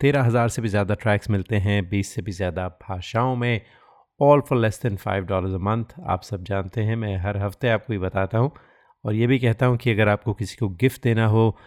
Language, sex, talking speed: Hindi, male, 230 wpm